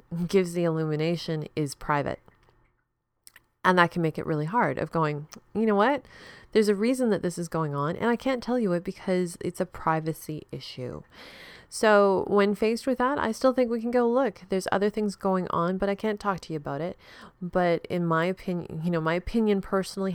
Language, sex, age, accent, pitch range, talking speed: English, female, 30-49, American, 145-190 Hz, 210 wpm